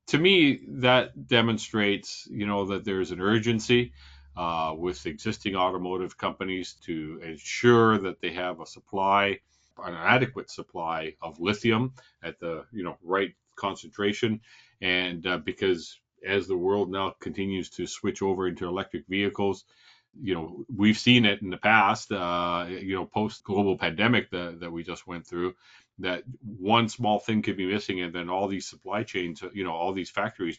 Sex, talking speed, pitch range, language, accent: male, 170 wpm, 90-110 Hz, English, American